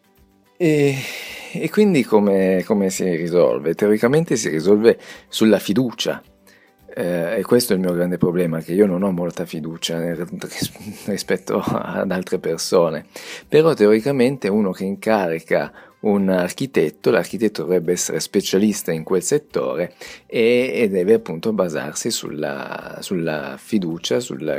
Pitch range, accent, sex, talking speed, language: 85-110 Hz, native, male, 130 wpm, Italian